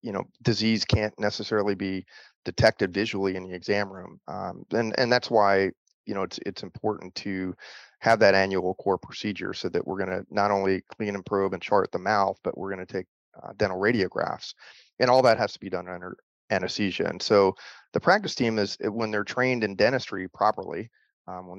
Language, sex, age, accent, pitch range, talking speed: English, male, 30-49, American, 95-105 Hz, 205 wpm